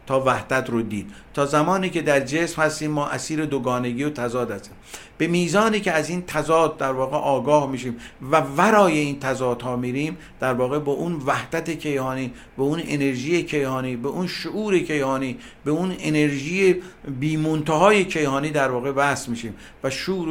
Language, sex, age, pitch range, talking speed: Persian, male, 50-69, 130-160 Hz, 170 wpm